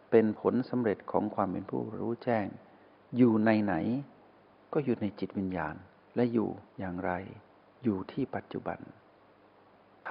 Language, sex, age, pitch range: Thai, male, 60-79, 100-120 Hz